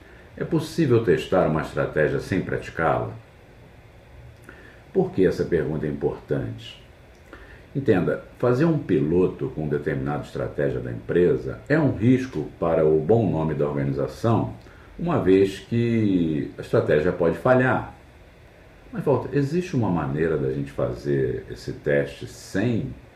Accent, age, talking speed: Brazilian, 50-69, 125 wpm